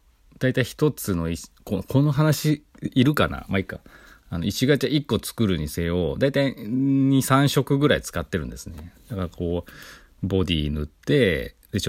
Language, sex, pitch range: Japanese, male, 75-105 Hz